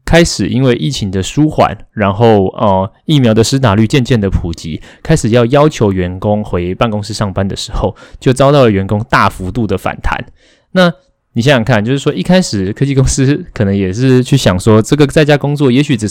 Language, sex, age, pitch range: Chinese, male, 20-39, 100-130 Hz